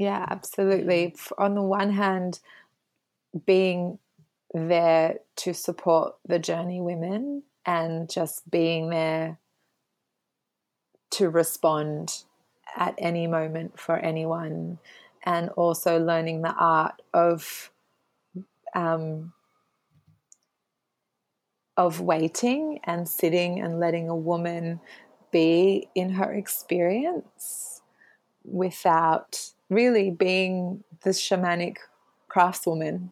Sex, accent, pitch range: female, Australian, 165-185 Hz